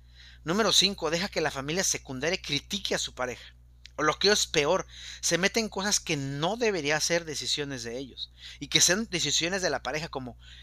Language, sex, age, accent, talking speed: Spanish, male, 40-59, Mexican, 200 wpm